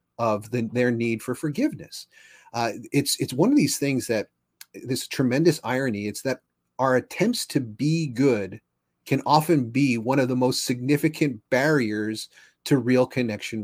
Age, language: 30-49, English